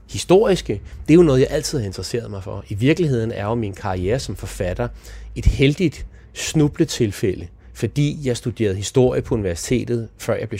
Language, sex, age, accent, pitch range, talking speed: Danish, male, 30-49, native, 100-125 Hz, 180 wpm